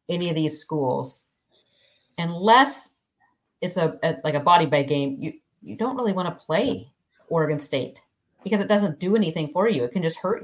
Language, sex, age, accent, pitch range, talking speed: English, female, 40-59, American, 150-190 Hz, 190 wpm